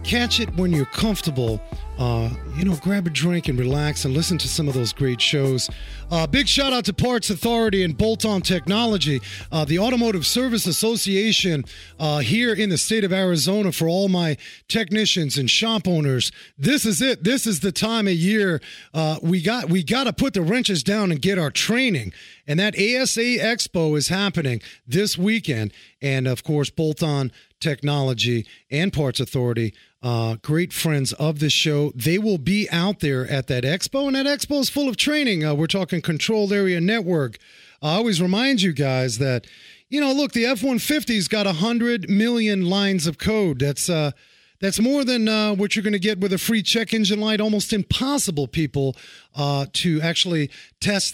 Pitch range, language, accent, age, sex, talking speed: 145-215 Hz, English, American, 30-49, male, 185 wpm